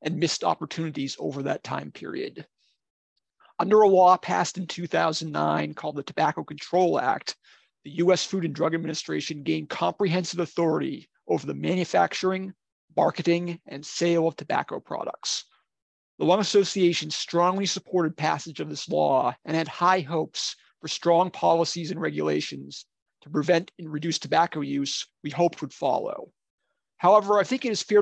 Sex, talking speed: male, 150 wpm